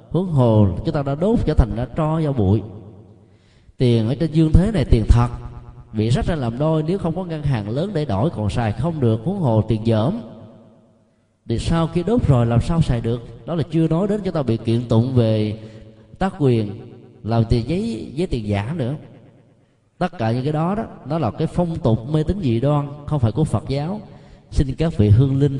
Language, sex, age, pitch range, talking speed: Vietnamese, male, 20-39, 110-150 Hz, 220 wpm